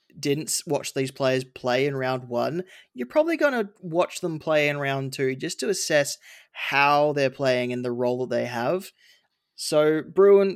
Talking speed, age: 180 wpm, 20-39